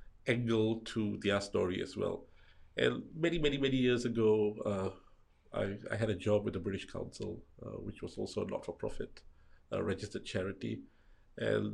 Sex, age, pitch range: male, 50-69, 95-130 Hz